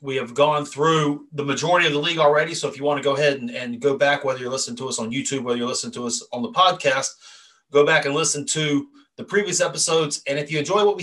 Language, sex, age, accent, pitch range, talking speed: English, male, 30-49, American, 140-175 Hz, 270 wpm